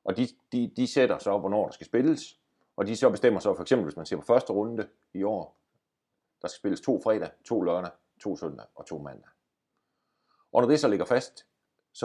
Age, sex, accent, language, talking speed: 40-59, male, native, Danish, 225 wpm